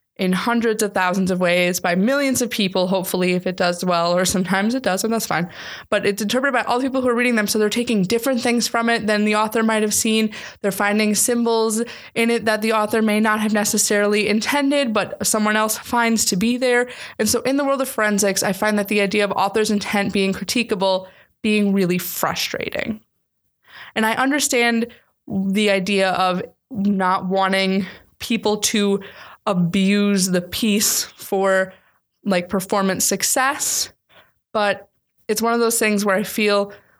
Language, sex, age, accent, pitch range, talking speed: English, female, 20-39, American, 190-220 Hz, 180 wpm